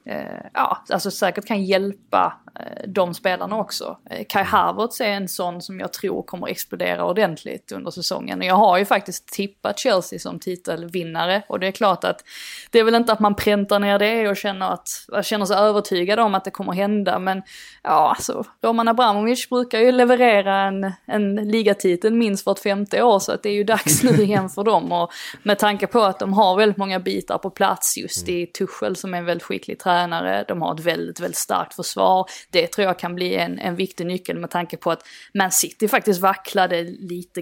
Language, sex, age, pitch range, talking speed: Swedish, female, 20-39, 180-210 Hz, 205 wpm